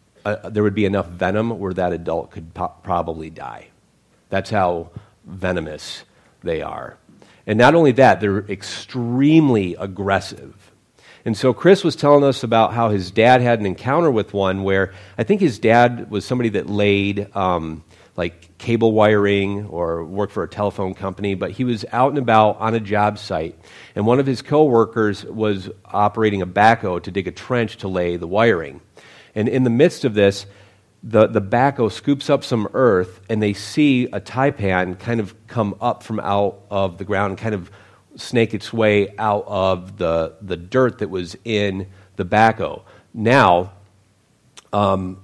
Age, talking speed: 40-59, 175 wpm